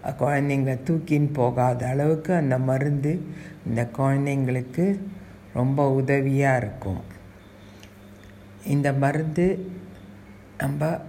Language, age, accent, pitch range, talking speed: Tamil, 60-79, native, 125-150 Hz, 75 wpm